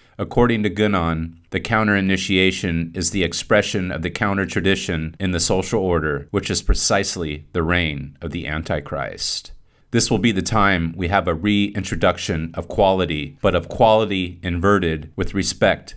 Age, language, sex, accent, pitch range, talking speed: 30-49, English, male, American, 85-100 Hz, 150 wpm